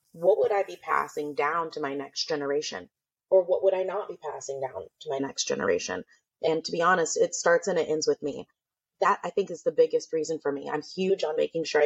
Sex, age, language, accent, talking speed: female, 30-49, English, American, 240 wpm